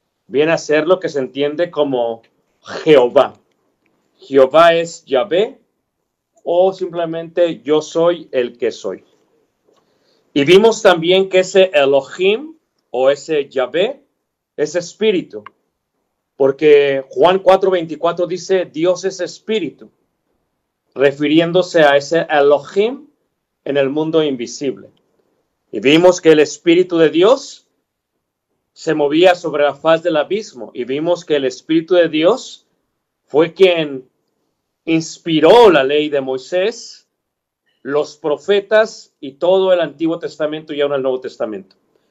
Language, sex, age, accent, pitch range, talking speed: Spanish, male, 40-59, Mexican, 150-185 Hz, 120 wpm